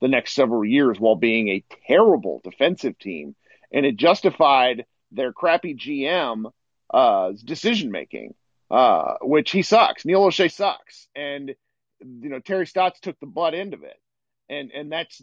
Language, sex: English, male